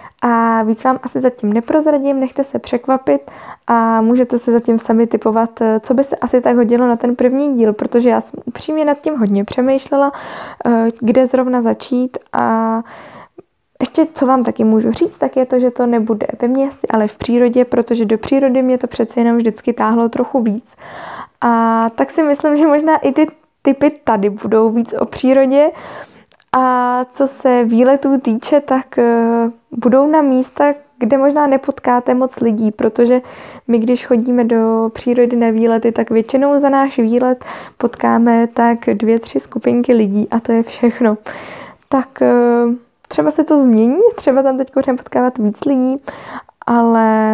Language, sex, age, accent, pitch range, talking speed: Czech, female, 20-39, native, 230-265 Hz, 160 wpm